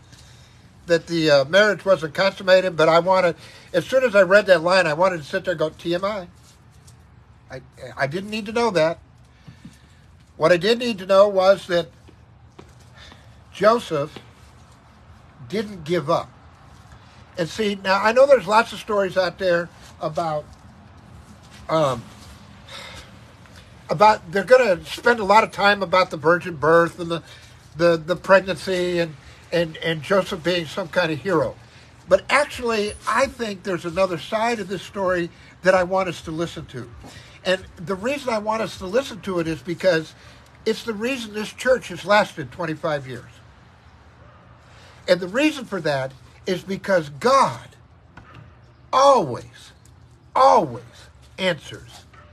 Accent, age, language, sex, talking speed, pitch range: American, 60-79, English, male, 150 wpm, 125-195 Hz